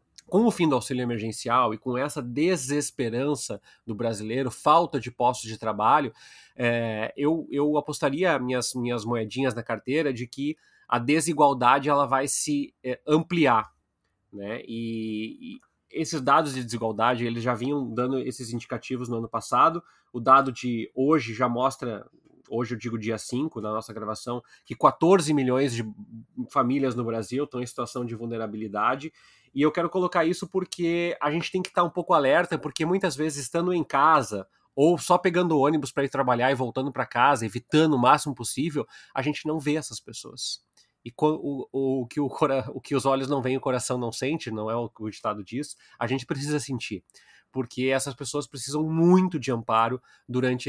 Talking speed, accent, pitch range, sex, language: 180 wpm, Brazilian, 120-150 Hz, male, Portuguese